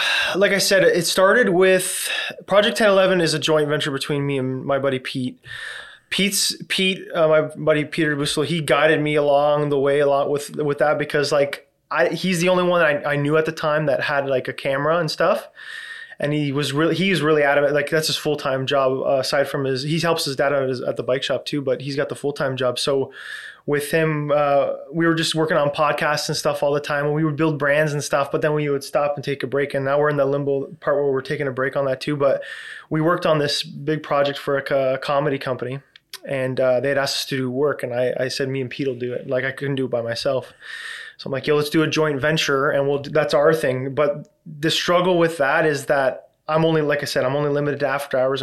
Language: English